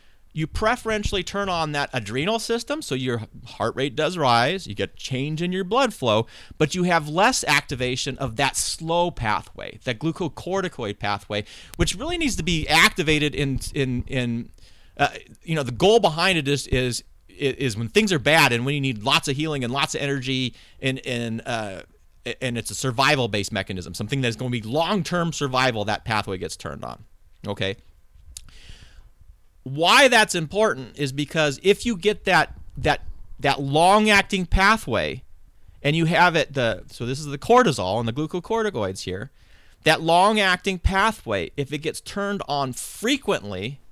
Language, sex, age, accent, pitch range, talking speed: English, male, 30-49, American, 115-175 Hz, 170 wpm